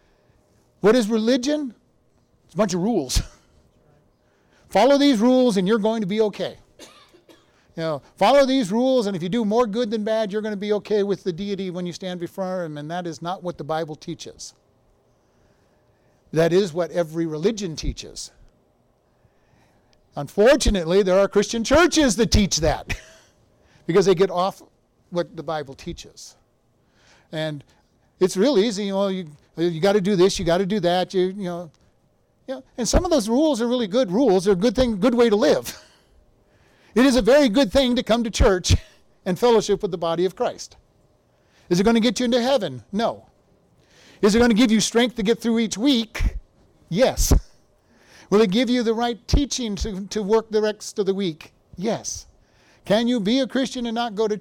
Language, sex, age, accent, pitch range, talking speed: English, male, 50-69, American, 180-235 Hz, 195 wpm